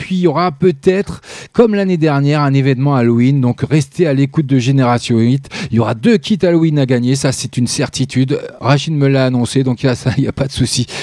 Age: 40-59